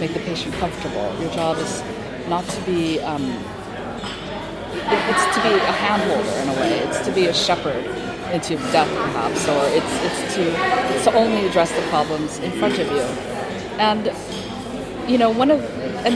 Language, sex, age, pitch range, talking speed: English, female, 40-59, 175-230 Hz, 180 wpm